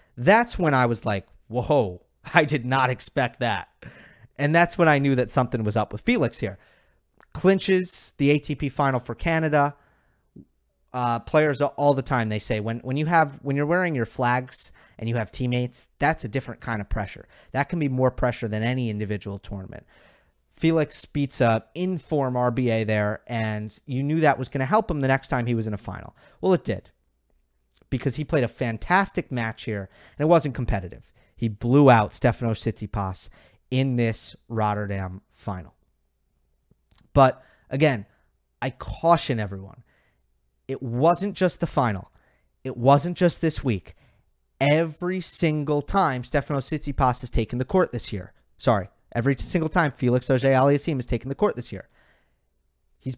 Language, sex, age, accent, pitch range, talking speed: English, male, 30-49, American, 105-145 Hz, 170 wpm